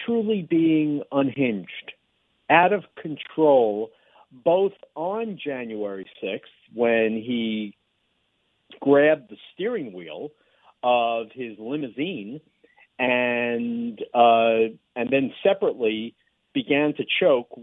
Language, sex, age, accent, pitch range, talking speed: English, male, 50-69, American, 120-160 Hz, 90 wpm